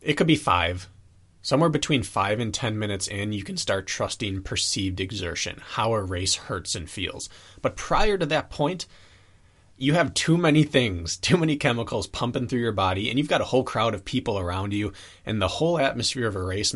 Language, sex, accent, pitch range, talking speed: English, male, American, 95-115 Hz, 205 wpm